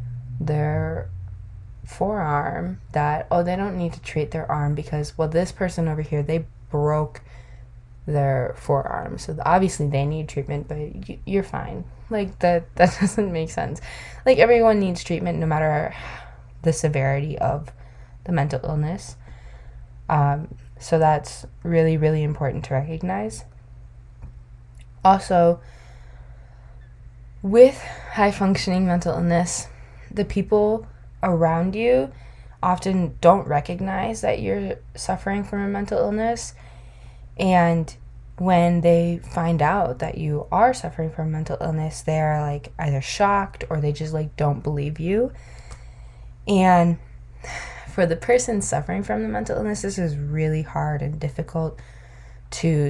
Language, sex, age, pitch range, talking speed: English, female, 10-29, 120-175 Hz, 130 wpm